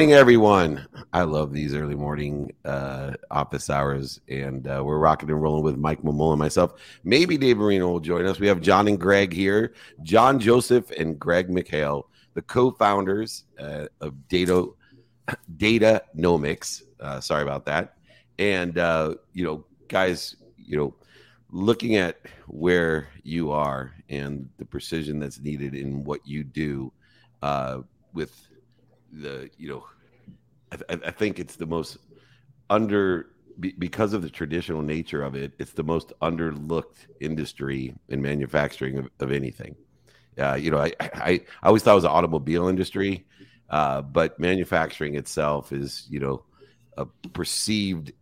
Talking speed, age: 155 wpm, 50-69